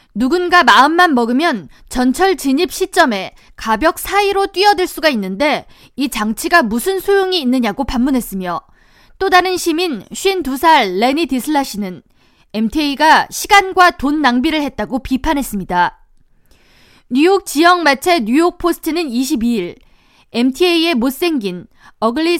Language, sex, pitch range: Korean, female, 250-350 Hz